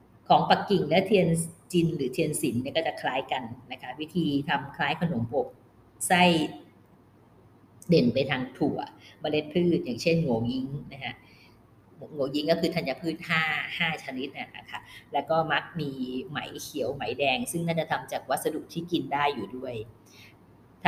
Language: Thai